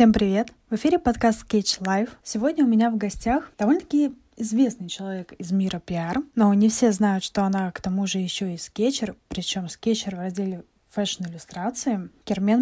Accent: native